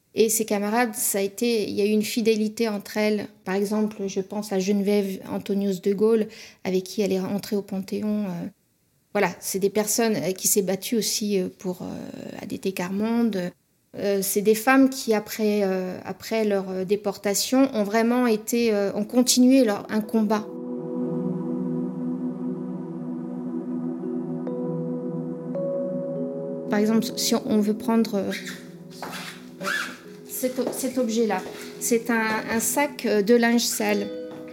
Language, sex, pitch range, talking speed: French, female, 195-225 Hz, 135 wpm